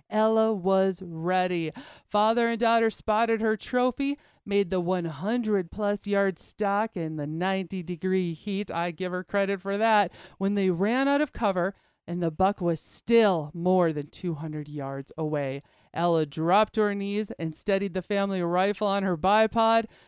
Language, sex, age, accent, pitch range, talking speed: English, female, 40-59, American, 185-235 Hz, 165 wpm